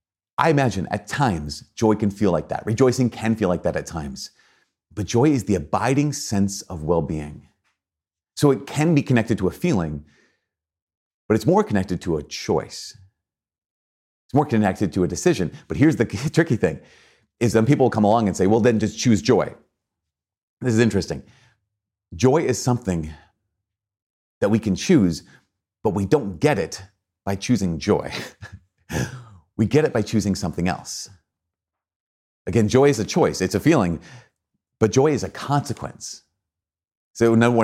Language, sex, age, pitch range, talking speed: English, male, 30-49, 90-120 Hz, 160 wpm